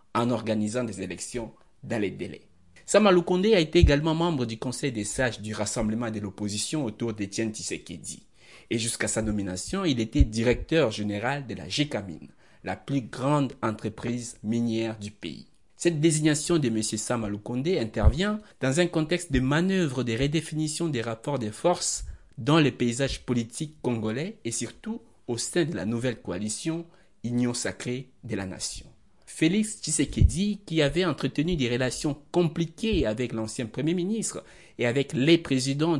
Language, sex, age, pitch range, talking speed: French, male, 60-79, 110-155 Hz, 160 wpm